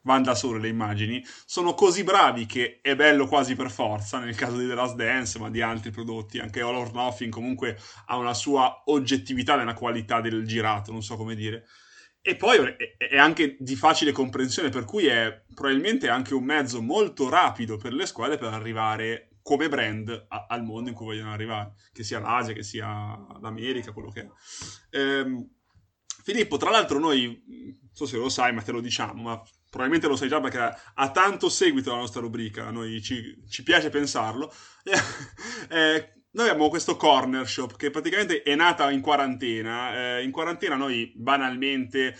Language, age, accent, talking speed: Italian, 20-39, native, 185 wpm